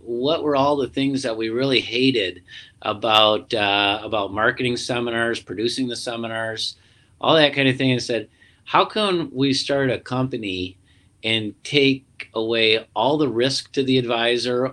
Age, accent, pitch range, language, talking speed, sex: 40-59, American, 105-125 Hz, English, 160 wpm, male